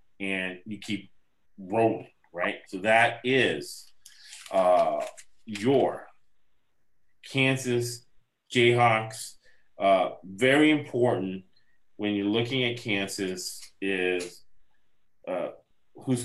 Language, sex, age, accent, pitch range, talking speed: English, male, 30-49, American, 95-120 Hz, 85 wpm